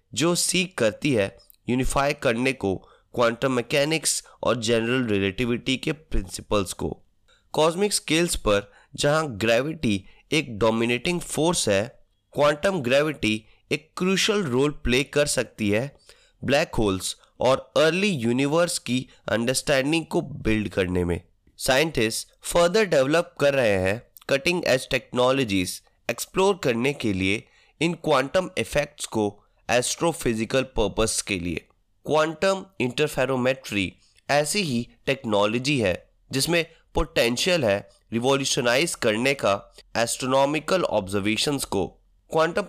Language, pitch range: Hindi, 110-160 Hz